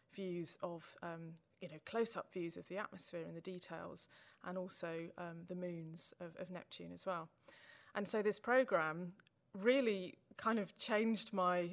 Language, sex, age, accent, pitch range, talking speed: English, female, 20-39, British, 170-195 Hz, 165 wpm